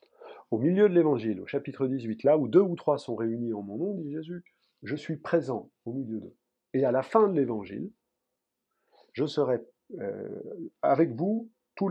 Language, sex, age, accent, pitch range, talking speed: French, male, 50-69, French, 125-195 Hz, 185 wpm